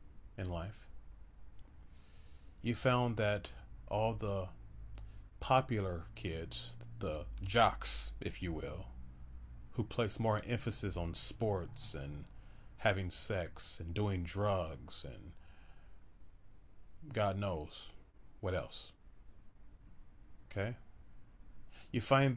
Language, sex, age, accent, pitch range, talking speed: English, male, 30-49, American, 90-105 Hz, 90 wpm